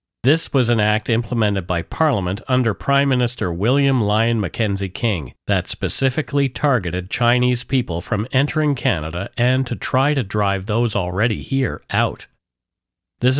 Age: 40-59